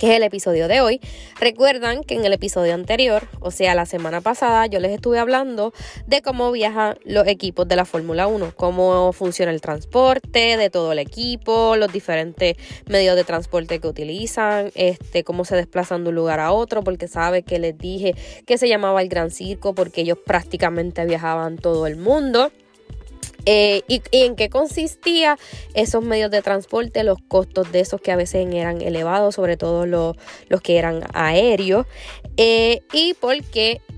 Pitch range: 180-220 Hz